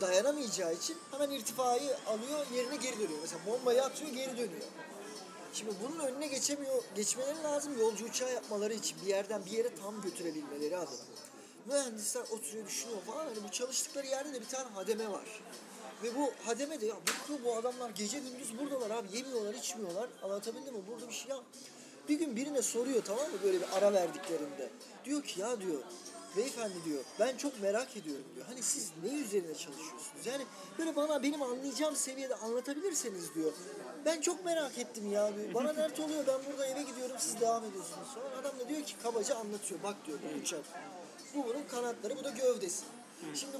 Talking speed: 180 wpm